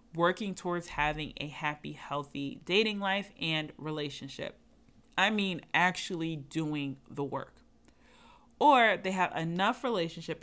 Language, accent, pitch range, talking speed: English, American, 150-190 Hz, 120 wpm